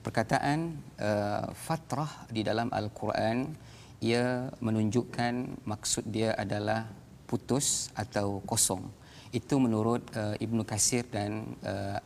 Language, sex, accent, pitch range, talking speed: Malayalam, male, Indonesian, 105-125 Hz, 115 wpm